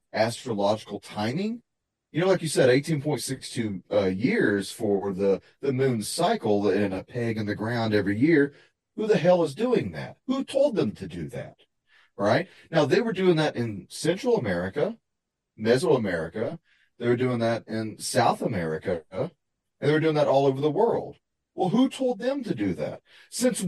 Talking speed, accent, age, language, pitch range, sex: 180 wpm, American, 40-59, English, 110-175 Hz, male